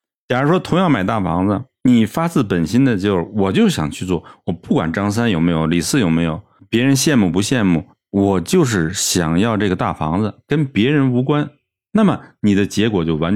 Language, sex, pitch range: Chinese, male, 85-125 Hz